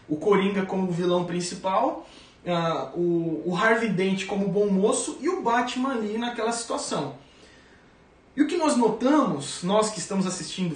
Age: 20-39